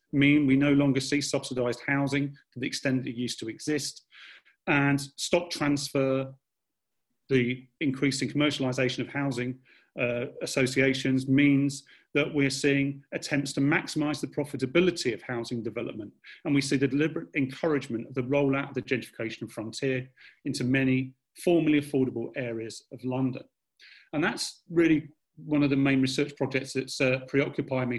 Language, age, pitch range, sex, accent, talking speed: English, 40-59, 130-145 Hz, male, British, 150 wpm